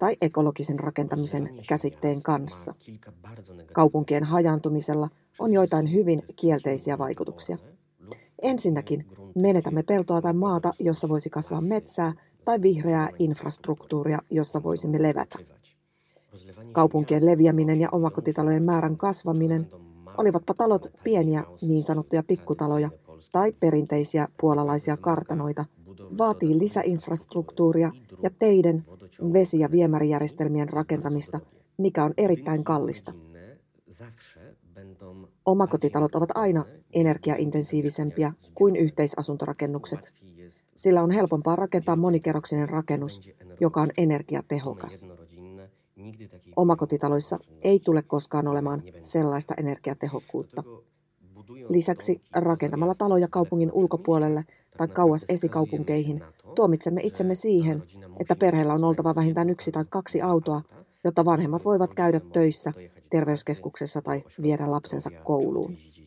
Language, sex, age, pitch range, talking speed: Finnish, female, 30-49, 145-170 Hz, 95 wpm